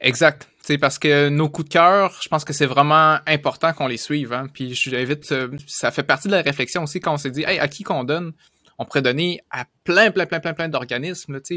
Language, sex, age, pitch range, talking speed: French, male, 20-39, 130-155 Hz, 245 wpm